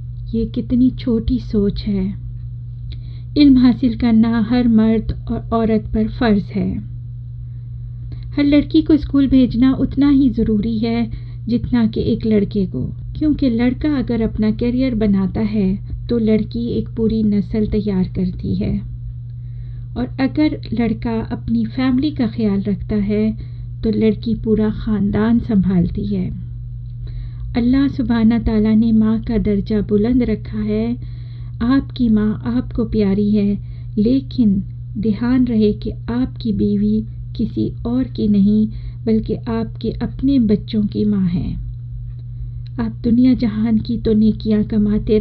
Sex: female